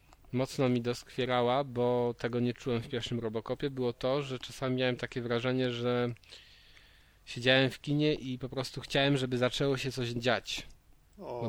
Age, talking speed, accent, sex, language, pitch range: 20-39, 160 wpm, native, male, Polish, 115-135 Hz